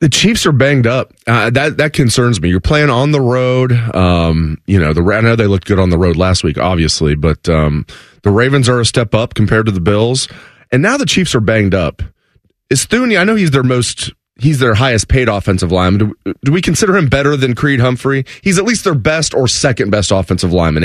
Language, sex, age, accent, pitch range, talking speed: English, male, 30-49, American, 95-130 Hz, 235 wpm